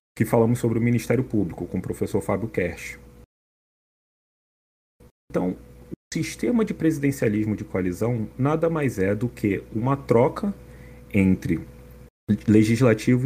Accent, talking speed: Brazilian, 120 wpm